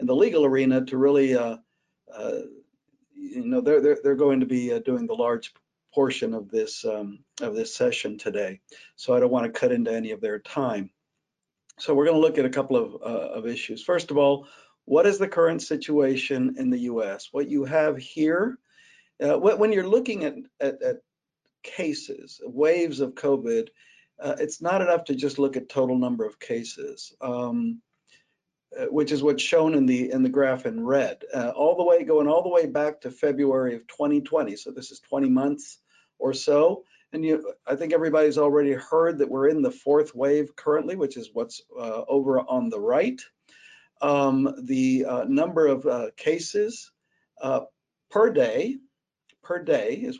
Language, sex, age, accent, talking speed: English, male, 50-69, American, 190 wpm